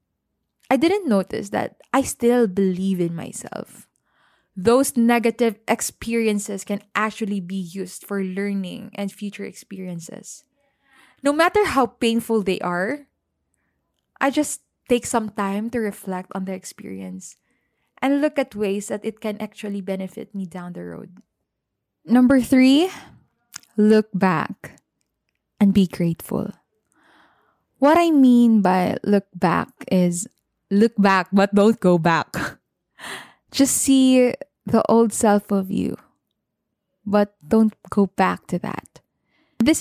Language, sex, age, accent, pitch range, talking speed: English, female, 10-29, Filipino, 195-240 Hz, 125 wpm